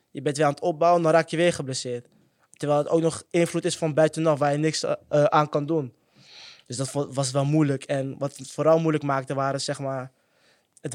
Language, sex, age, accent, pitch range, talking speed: Dutch, male, 20-39, Dutch, 140-160 Hz, 225 wpm